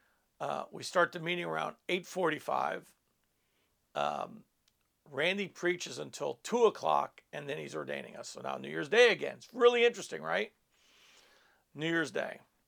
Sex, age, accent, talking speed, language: male, 50-69, American, 145 wpm, English